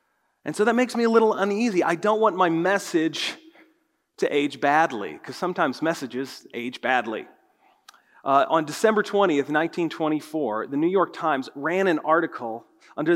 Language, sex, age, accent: English, male, 40-59, American